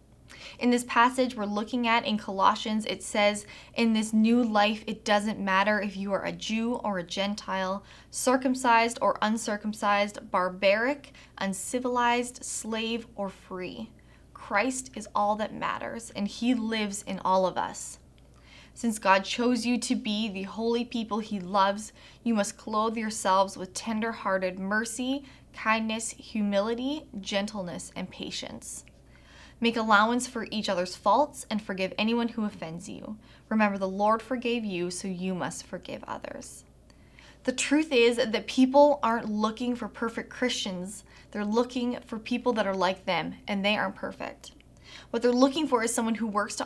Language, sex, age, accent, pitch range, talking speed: English, female, 20-39, American, 200-240 Hz, 155 wpm